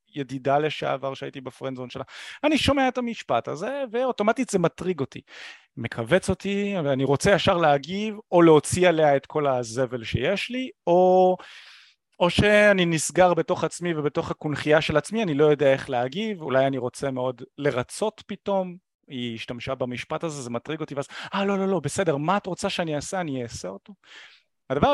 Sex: male